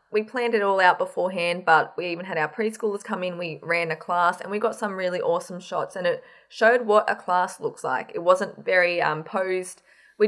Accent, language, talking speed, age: Australian, English, 230 wpm, 20-39